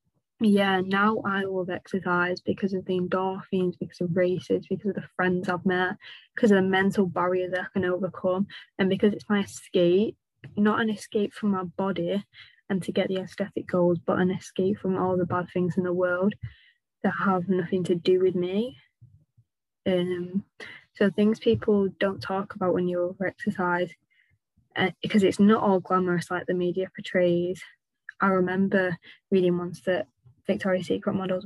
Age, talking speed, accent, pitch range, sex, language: 20-39, 170 wpm, British, 175-195 Hz, female, English